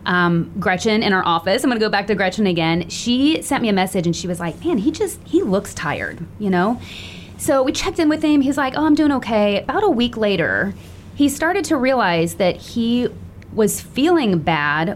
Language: English